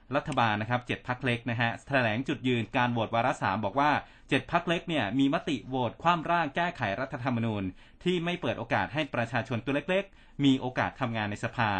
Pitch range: 115-150 Hz